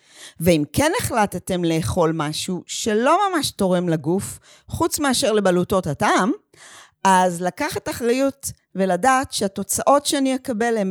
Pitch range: 175-245 Hz